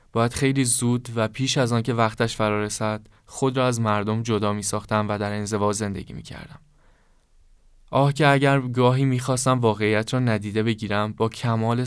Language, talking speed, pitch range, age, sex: Persian, 155 wpm, 105-125 Hz, 10-29, male